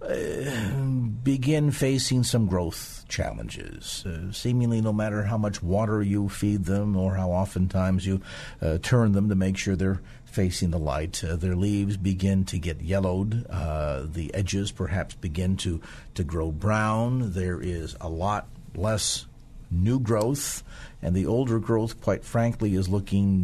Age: 50-69